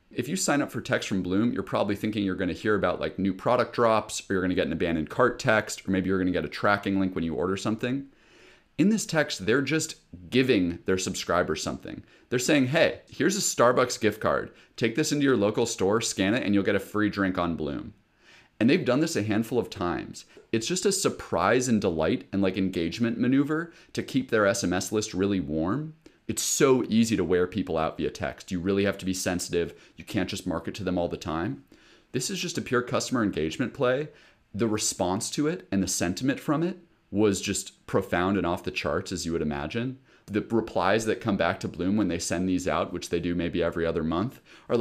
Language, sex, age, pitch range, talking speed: English, male, 30-49, 90-130 Hz, 225 wpm